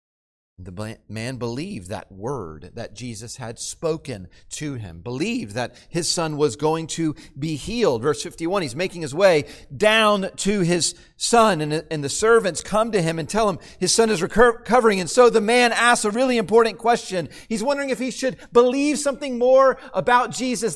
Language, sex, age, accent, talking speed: English, male, 40-59, American, 180 wpm